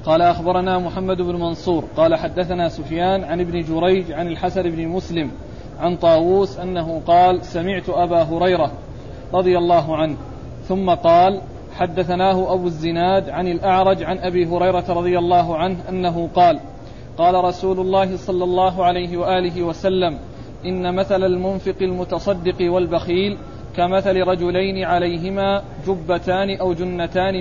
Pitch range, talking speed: 175-190 Hz, 130 wpm